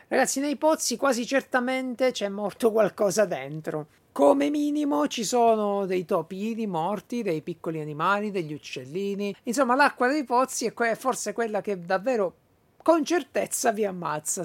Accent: native